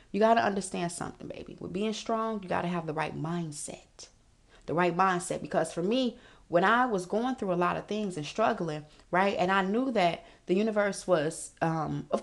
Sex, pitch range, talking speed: female, 175-230 Hz, 210 wpm